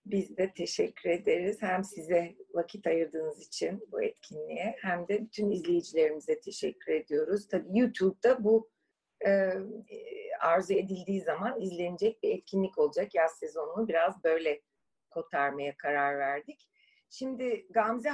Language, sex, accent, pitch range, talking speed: Turkish, female, native, 170-255 Hz, 120 wpm